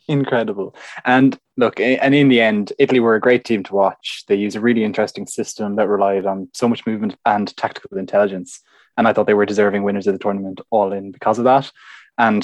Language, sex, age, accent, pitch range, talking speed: English, male, 20-39, Irish, 100-125 Hz, 215 wpm